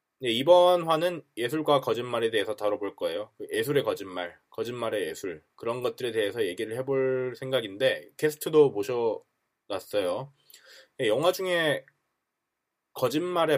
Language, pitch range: Korean, 120-205 Hz